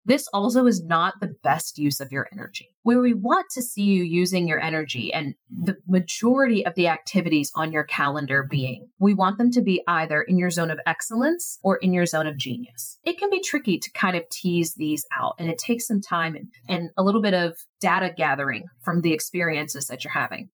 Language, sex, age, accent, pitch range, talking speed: English, female, 30-49, American, 165-230 Hz, 220 wpm